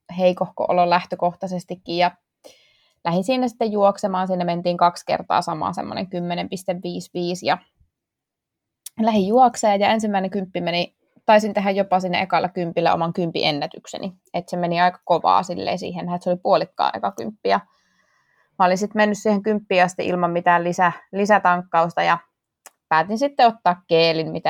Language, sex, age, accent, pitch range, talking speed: Finnish, female, 20-39, native, 175-210 Hz, 140 wpm